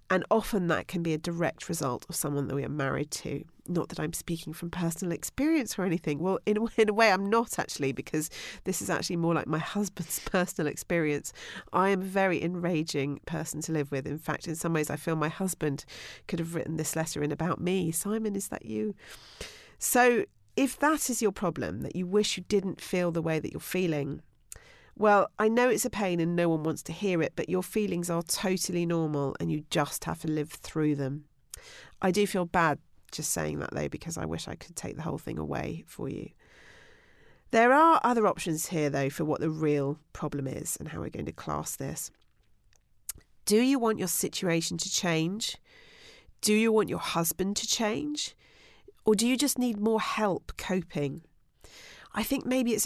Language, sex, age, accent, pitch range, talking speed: English, female, 40-59, British, 155-210 Hz, 205 wpm